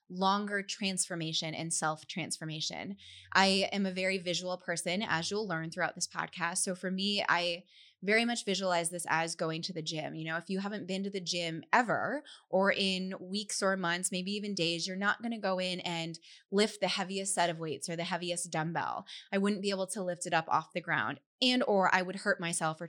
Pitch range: 170-205 Hz